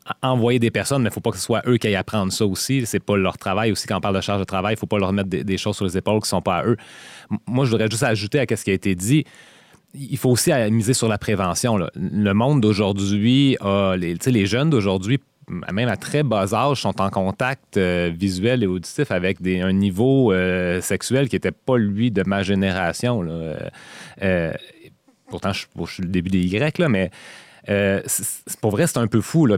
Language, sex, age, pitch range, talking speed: English, male, 30-49, 95-120 Hz, 245 wpm